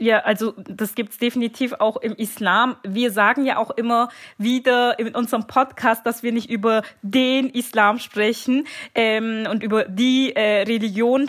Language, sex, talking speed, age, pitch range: German, female, 165 wpm, 20-39, 225-260 Hz